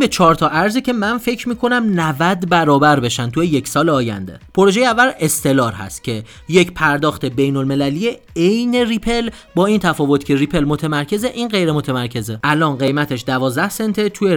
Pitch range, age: 130-195 Hz, 30-49